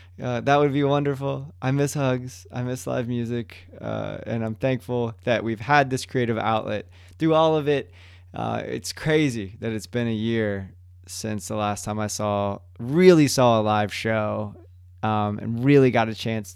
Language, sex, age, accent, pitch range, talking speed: English, male, 20-39, American, 105-130 Hz, 185 wpm